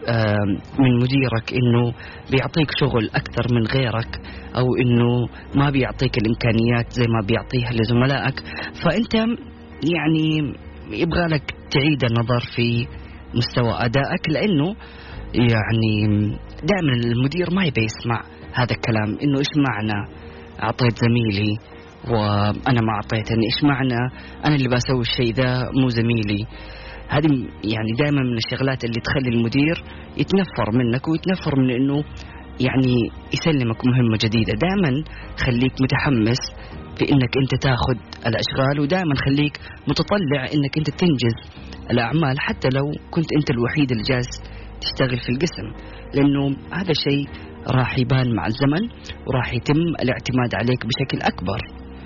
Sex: female